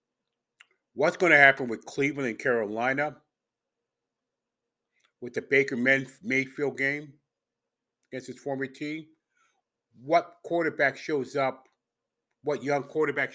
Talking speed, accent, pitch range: 105 wpm, American, 130-155 Hz